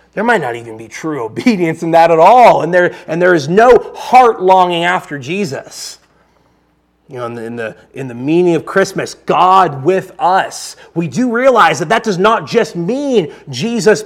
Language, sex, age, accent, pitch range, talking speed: English, male, 30-49, American, 150-215 Hz, 190 wpm